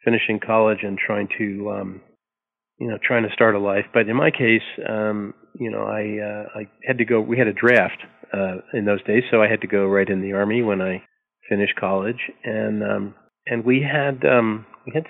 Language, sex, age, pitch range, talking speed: English, male, 40-59, 105-125 Hz, 220 wpm